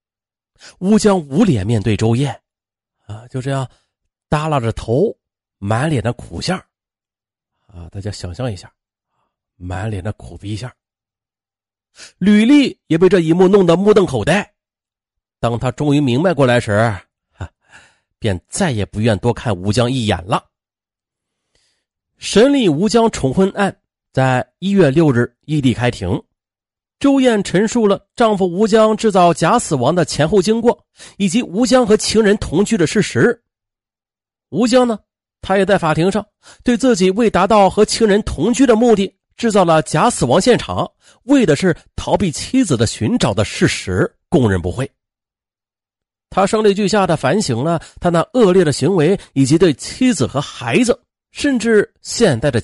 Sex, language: male, Chinese